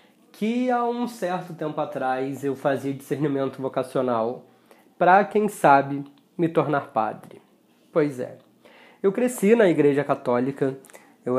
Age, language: 20-39, Portuguese